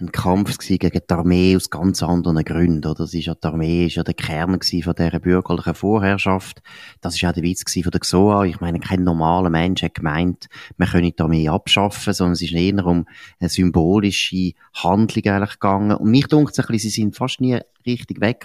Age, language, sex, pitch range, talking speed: 30-49, German, male, 85-105 Hz, 210 wpm